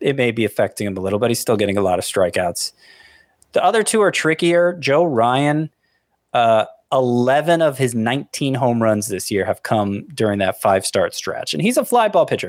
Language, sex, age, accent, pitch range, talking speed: English, male, 20-39, American, 105-150 Hz, 205 wpm